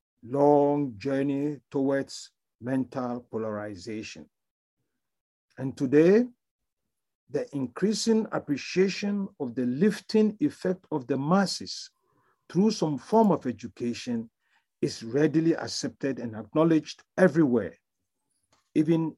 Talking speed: 90 wpm